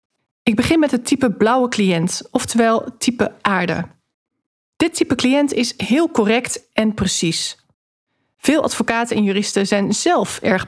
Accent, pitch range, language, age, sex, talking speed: Dutch, 195-260 Hz, Dutch, 40-59, female, 140 wpm